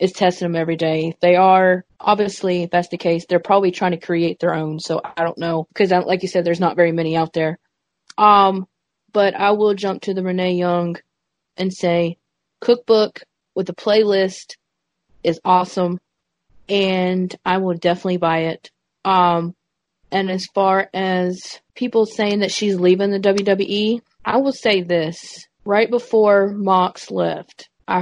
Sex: female